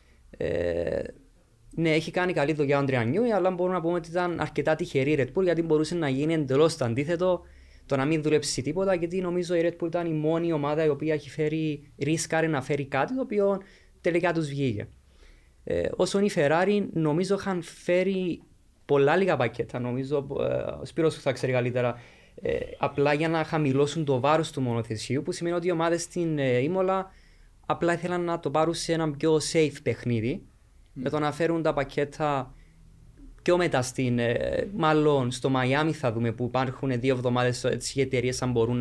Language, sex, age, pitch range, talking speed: Greek, male, 20-39, 125-160 Hz, 175 wpm